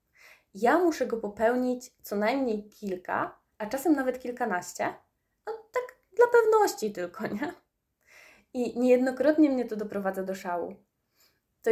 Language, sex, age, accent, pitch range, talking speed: Polish, female, 20-39, native, 205-275 Hz, 130 wpm